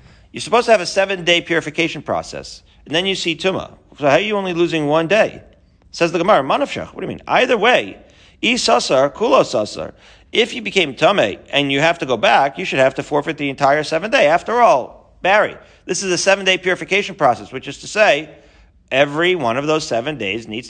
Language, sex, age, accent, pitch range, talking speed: English, male, 40-59, American, 130-180 Hz, 205 wpm